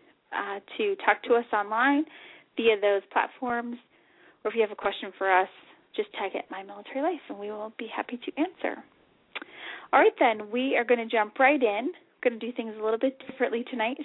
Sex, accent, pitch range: female, American, 215-280 Hz